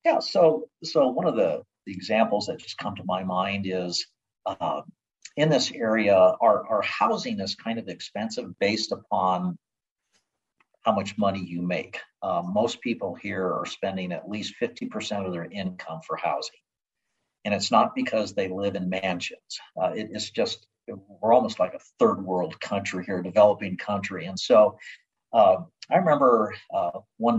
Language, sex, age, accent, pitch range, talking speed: English, male, 50-69, American, 95-160 Hz, 165 wpm